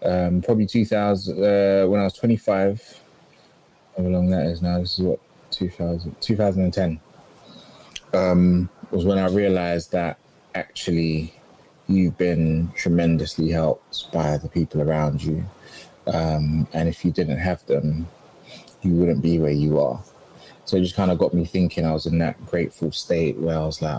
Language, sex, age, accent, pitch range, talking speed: English, male, 20-39, British, 80-90 Hz, 165 wpm